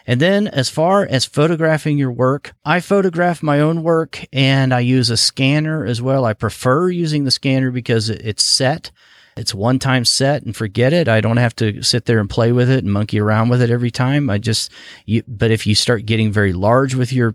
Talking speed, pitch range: 220 wpm, 105-130 Hz